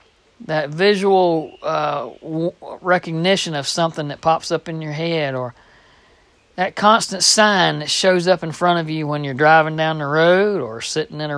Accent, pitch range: American, 145-175 Hz